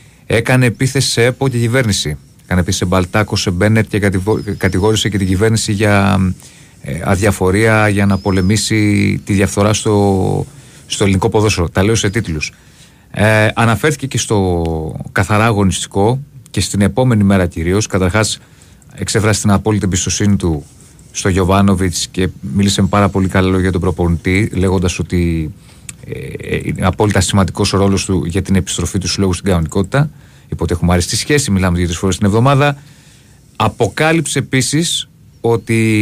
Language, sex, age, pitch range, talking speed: Greek, male, 30-49, 95-125 Hz, 150 wpm